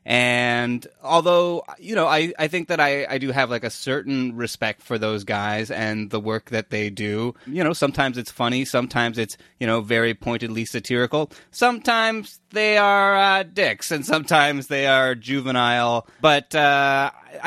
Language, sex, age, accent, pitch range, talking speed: English, male, 20-39, American, 120-165 Hz, 170 wpm